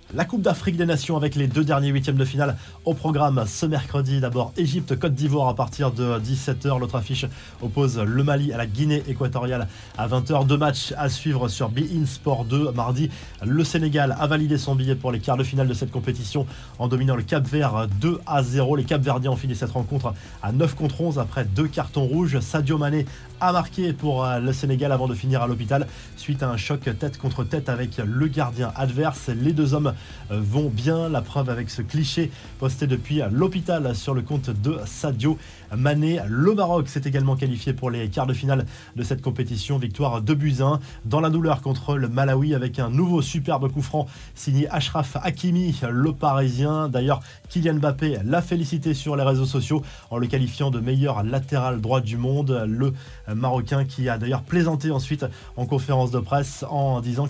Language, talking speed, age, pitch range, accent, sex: French, 195 wpm, 20-39, 125-150 Hz, French, male